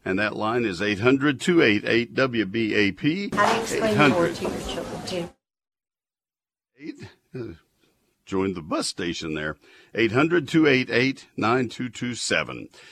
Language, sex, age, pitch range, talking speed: English, male, 60-79, 80-115 Hz, 95 wpm